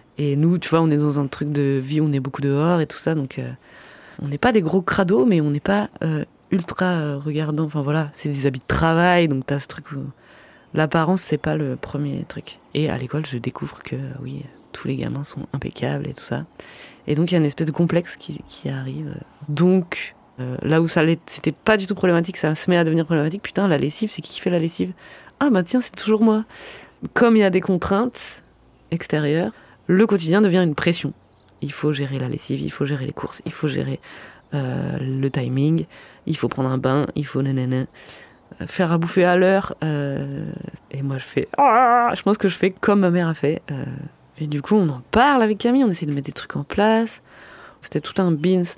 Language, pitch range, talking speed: French, 140-180 Hz, 235 wpm